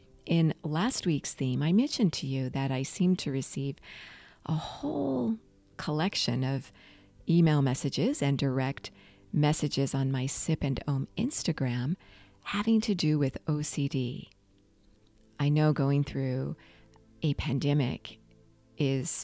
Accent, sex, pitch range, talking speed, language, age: American, female, 130-160 Hz, 125 wpm, English, 40-59